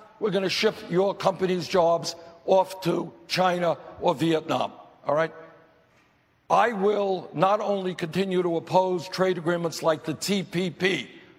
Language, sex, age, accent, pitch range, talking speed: English, male, 60-79, American, 180-215 Hz, 135 wpm